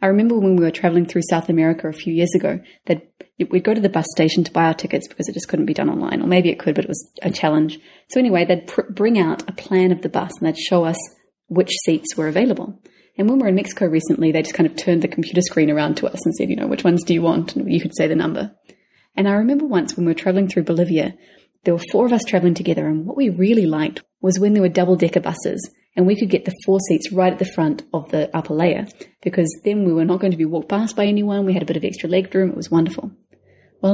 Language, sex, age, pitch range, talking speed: English, female, 30-49, 165-200 Hz, 280 wpm